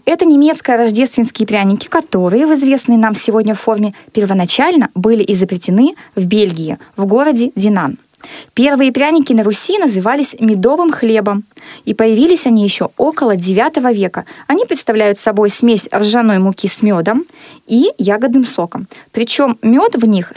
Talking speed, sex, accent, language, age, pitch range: 140 wpm, female, native, Russian, 20-39, 205-265 Hz